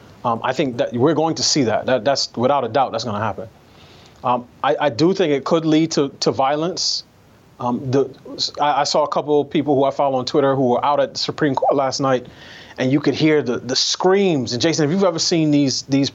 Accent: American